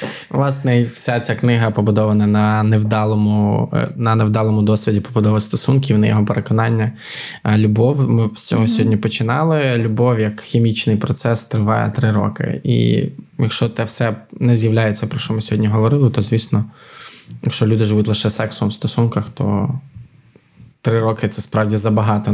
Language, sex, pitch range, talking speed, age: Ukrainian, male, 110-120 Hz, 150 wpm, 20-39